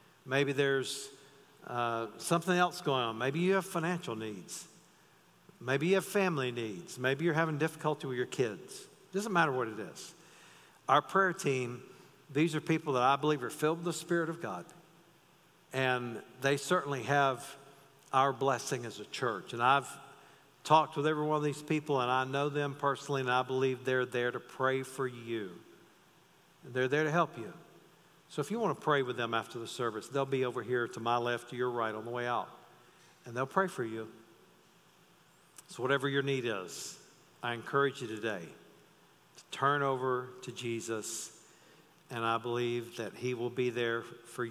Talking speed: 180 wpm